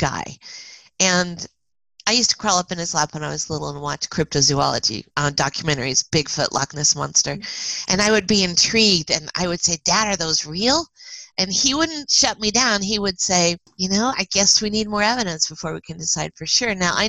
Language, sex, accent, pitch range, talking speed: English, female, American, 160-215 Hz, 215 wpm